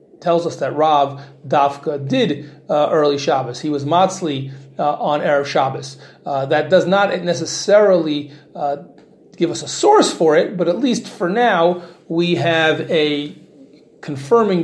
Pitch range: 145-180 Hz